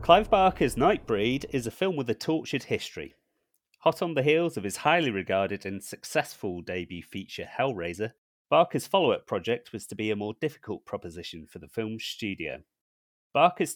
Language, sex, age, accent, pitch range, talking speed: English, male, 30-49, British, 95-125 Hz, 165 wpm